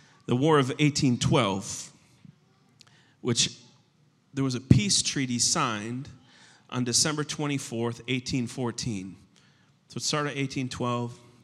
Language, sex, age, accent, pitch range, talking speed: English, male, 30-49, American, 120-150 Hz, 100 wpm